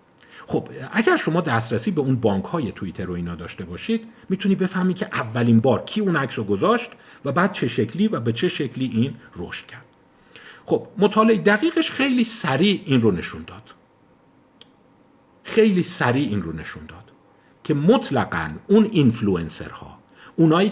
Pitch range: 115-190 Hz